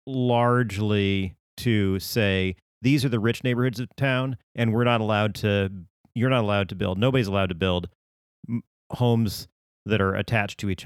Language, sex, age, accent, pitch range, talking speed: English, male, 40-59, American, 95-110 Hz, 165 wpm